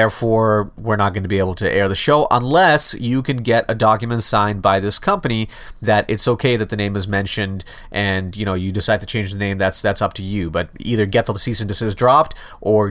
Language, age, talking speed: English, 30-49, 240 wpm